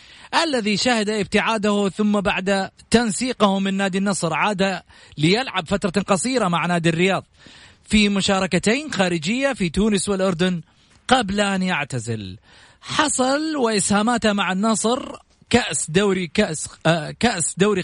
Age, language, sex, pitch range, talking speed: 30-49, Arabic, male, 160-210 Hz, 120 wpm